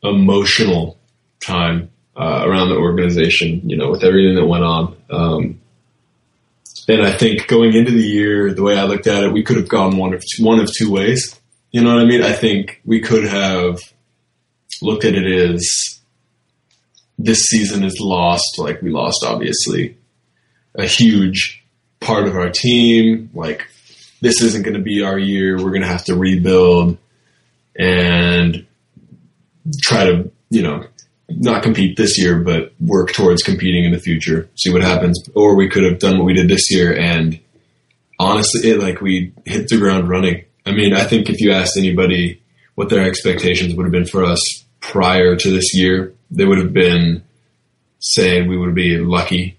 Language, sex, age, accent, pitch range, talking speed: English, male, 20-39, American, 90-110 Hz, 175 wpm